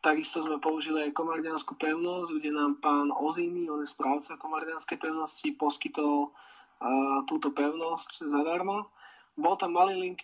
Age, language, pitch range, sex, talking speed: 20-39, Slovak, 155-180 Hz, male, 135 wpm